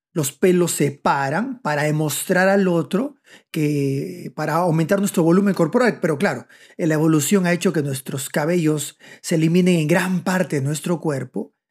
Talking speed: 160 wpm